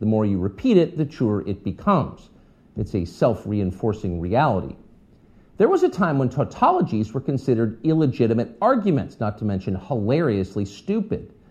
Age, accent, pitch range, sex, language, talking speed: 50-69, American, 105-175 Hz, male, English, 145 wpm